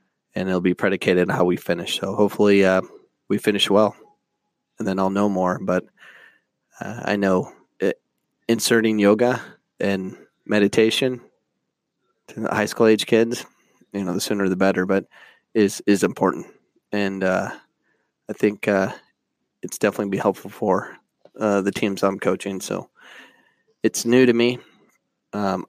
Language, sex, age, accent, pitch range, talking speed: English, male, 20-39, American, 95-110 Hz, 150 wpm